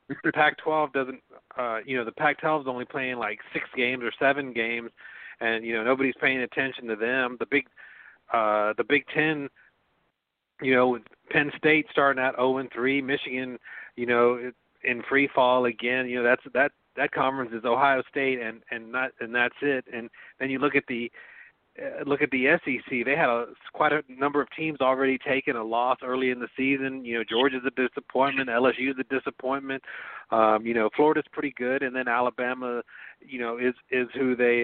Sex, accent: male, American